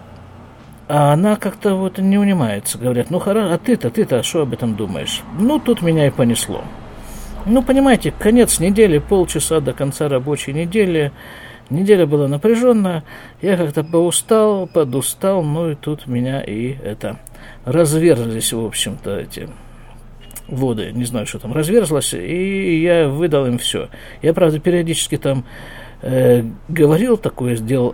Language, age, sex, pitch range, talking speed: Russian, 50-69, male, 125-180 Hz, 135 wpm